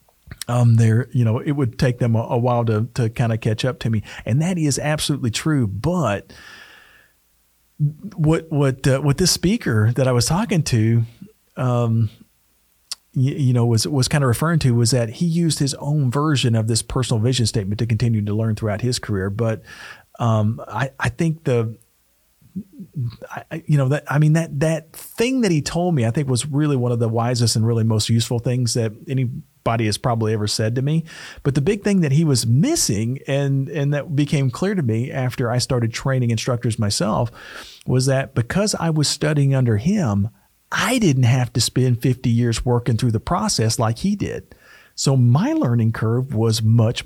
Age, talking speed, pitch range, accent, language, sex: 40-59, 200 wpm, 115-150 Hz, American, English, male